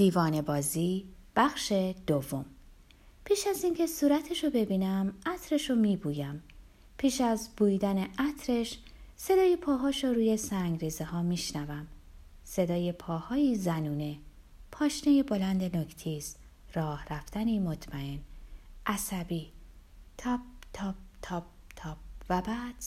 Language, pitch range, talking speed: Persian, 160-270 Hz, 110 wpm